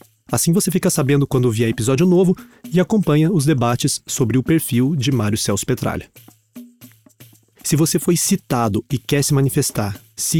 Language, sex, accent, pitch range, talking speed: Portuguese, male, Brazilian, 120-155 Hz, 160 wpm